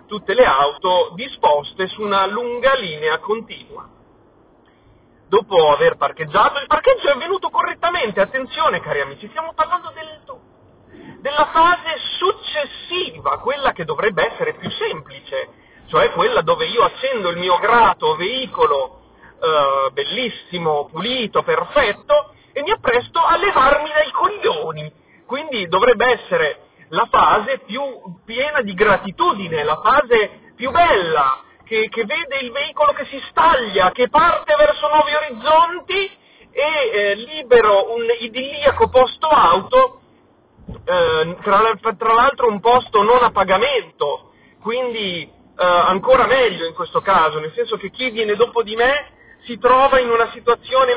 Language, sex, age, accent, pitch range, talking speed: Italian, male, 30-49, native, 215-335 Hz, 130 wpm